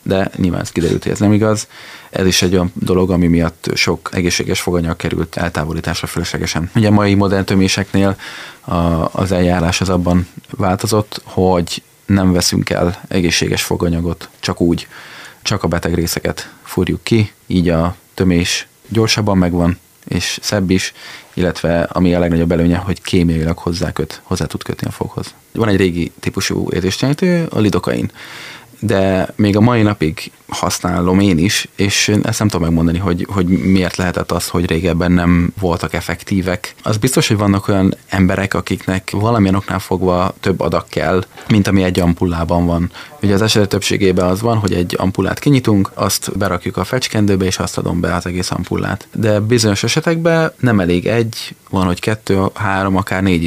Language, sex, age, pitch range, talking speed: Hungarian, male, 30-49, 85-100 Hz, 165 wpm